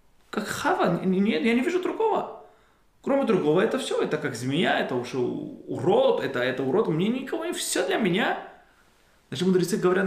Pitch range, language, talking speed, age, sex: 135-220 Hz, Russian, 180 wpm, 20-39, male